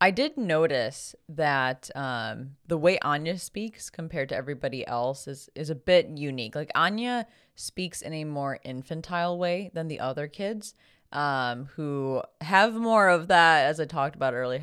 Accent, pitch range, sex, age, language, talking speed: American, 130-160 Hz, female, 20-39, English, 170 wpm